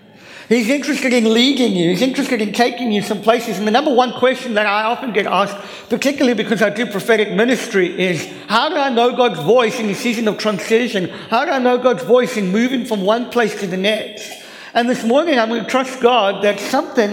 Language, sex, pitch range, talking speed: English, male, 215-255 Hz, 225 wpm